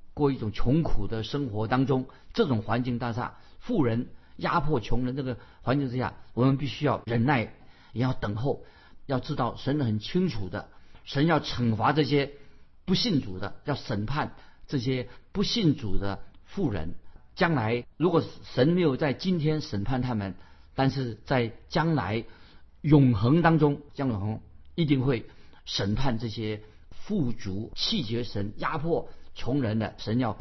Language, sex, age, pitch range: Chinese, male, 50-69, 110-135 Hz